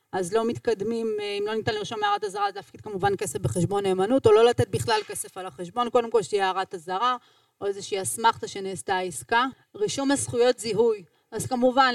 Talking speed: 185 wpm